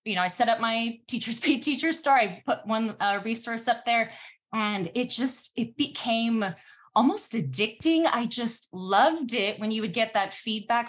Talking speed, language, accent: 185 wpm, English, American